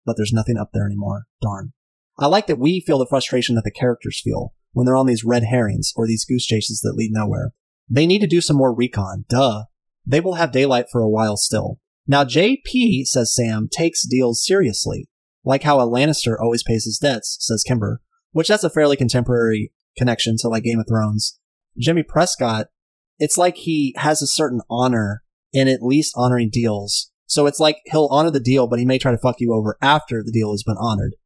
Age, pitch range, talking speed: 30-49, 115-150 Hz, 210 wpm